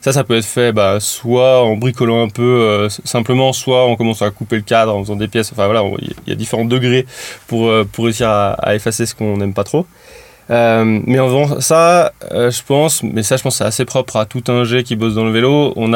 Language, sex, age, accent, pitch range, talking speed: French, male, 20-39, French, 115-135 Hz, 255 wpm